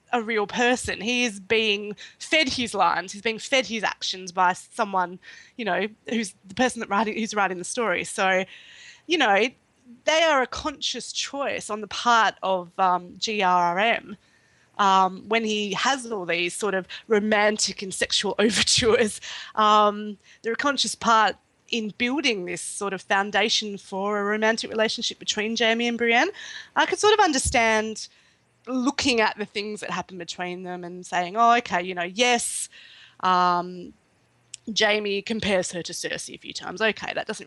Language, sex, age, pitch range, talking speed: English, female, 20-39, 190-240 Hz, 165 wpm